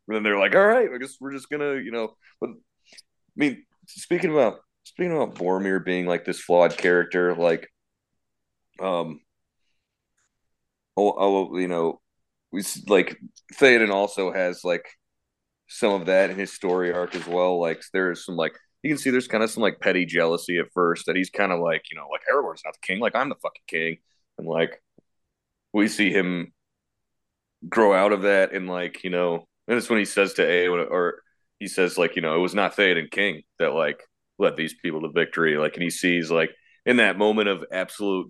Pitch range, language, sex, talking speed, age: 90-105 Hz, English, male, 200 wpm, 30-49